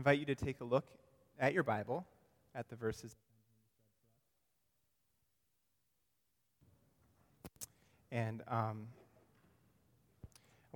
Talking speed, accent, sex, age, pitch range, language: 85 wpm, American, male, 30-49, 115-155 Hz, English